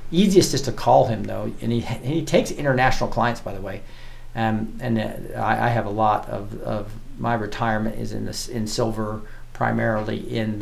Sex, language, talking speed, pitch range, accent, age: male, English, 190 wpm, 115-135 Hz, American, 40-59